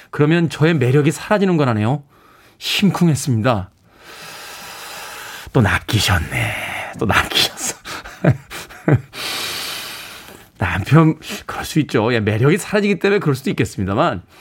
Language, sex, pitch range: Korean, male, 105-155 Hz